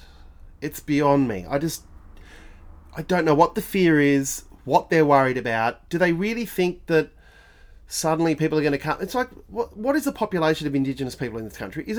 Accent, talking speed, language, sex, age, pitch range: Australian, 205 wpm, English, male, 30-49, 135-215 Hz